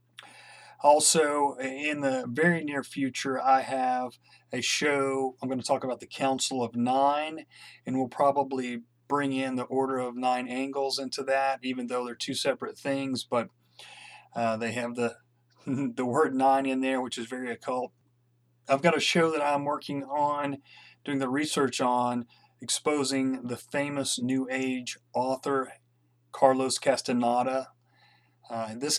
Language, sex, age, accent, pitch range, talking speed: English, male, 40-59, American, 120-140 Hz, 150 wpm